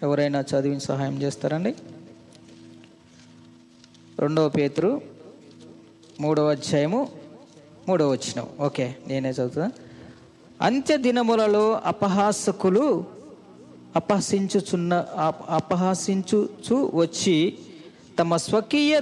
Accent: native